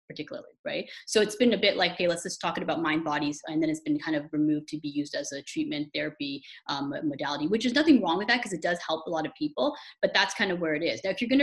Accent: American